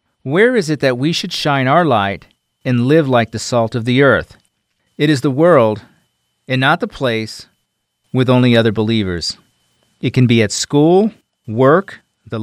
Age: 40-59